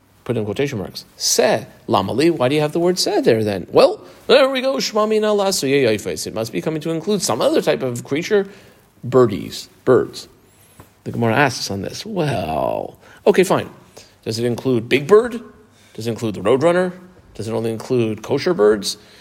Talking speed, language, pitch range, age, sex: 185 wpm, English, 115-160 Hz, 40-59, male